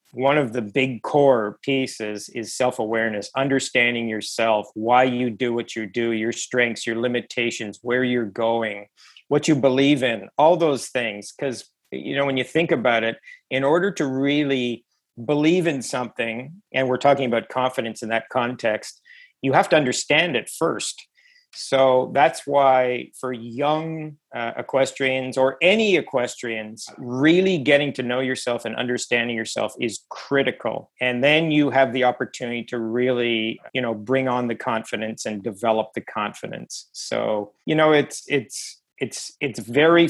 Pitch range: 115-140 Hz